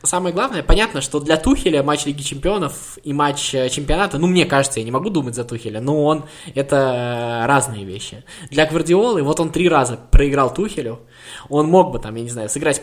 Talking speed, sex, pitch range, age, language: 195 wpm, male, 120-150 Hz, 20-39, Russian